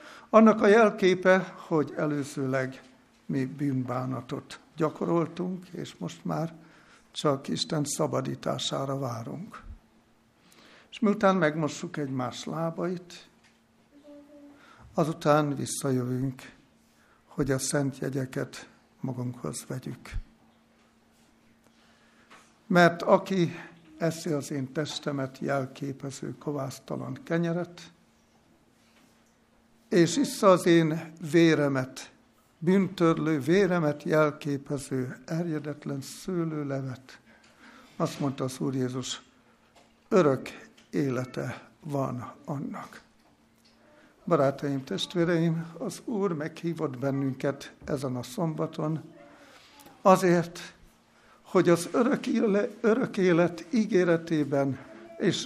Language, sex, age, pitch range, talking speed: Hungarian, male, 60-79, 140-180 Hz, 80 wpm